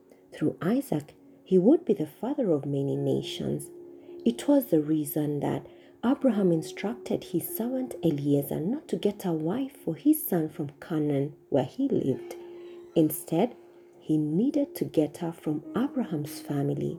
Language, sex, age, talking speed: English, female, 40-59, 150 wpm